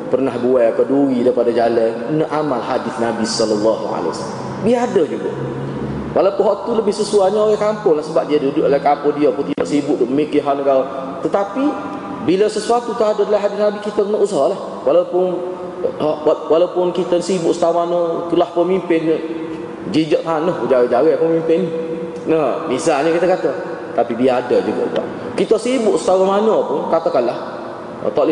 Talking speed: 135 wpm